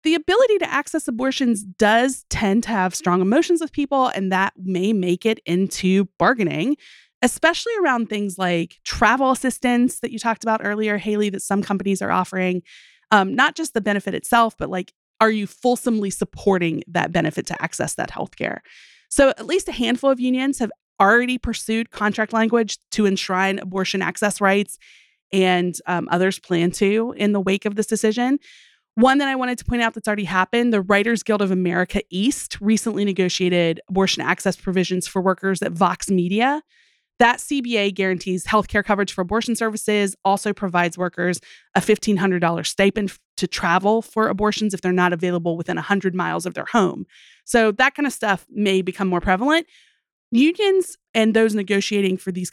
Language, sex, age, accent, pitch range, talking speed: English, female, 30-49, American, 190-240 Hz, 175 wpm